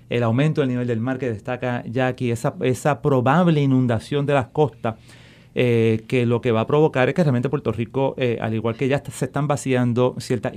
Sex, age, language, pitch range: male, 30-49, Spanish, 115-140 Hz